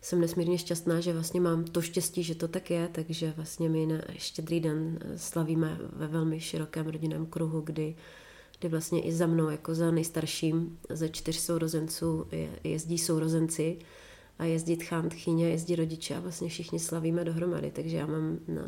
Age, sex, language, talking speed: 30-49, female, Czech, 170 wpm